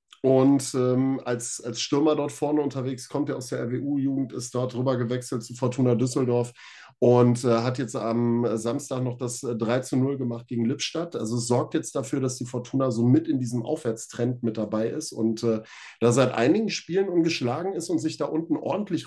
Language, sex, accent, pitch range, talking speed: German, male, German, 120-150 Hz, 200 wpm